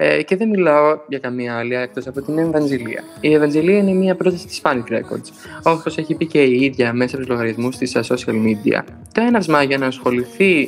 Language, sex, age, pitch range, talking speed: Greek, male, 20-39, 125-175 Hz, 210 wpm